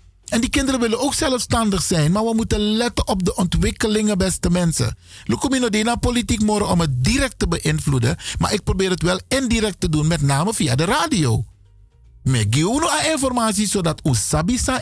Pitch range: 140-210 Hz